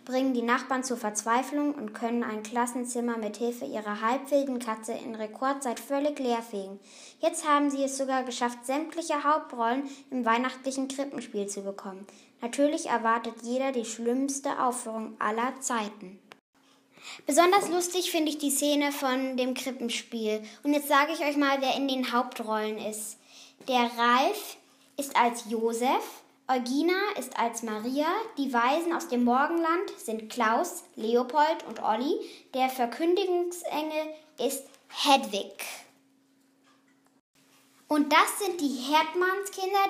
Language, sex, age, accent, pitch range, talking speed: German, female, 10-29, German, 230-290 Hz, 130 wpm